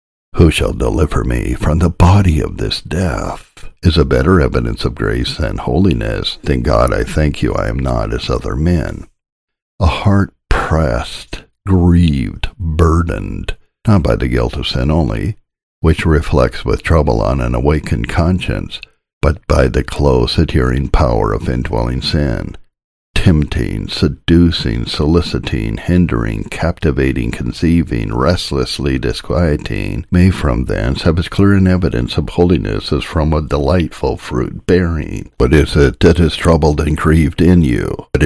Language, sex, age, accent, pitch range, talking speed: English, male, 60-79, American, 70-90 Hz, 145 wpm